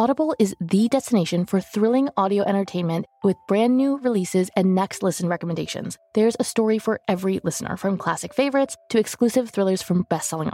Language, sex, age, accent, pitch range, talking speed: English, female, 20-39, American, 185-235 Hz, 170 wpm